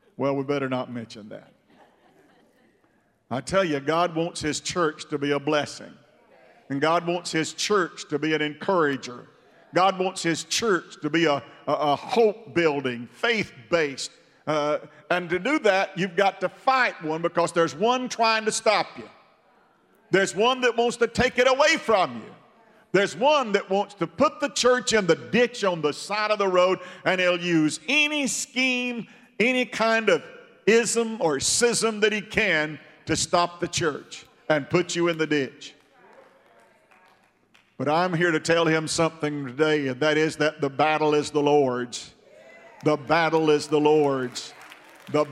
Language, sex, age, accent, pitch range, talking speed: English, male, 50-69, American, 150-200 Hz, 170 wpm